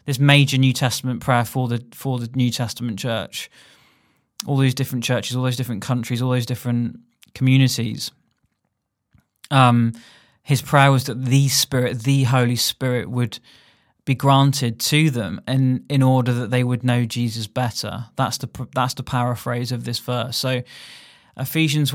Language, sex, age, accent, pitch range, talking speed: English, male, 20-39, British, 120-135 Hz, 160 wpm